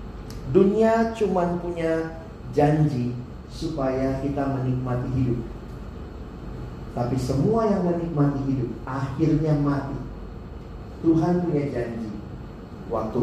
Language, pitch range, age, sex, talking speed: Indonesian, 120-150 Hz, 40-59, male, 85 wpm